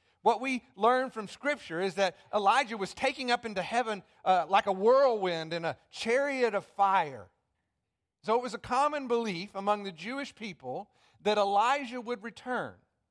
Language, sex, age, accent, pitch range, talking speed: English, male, 50-69, American, 165-230 Hz, 165 wpm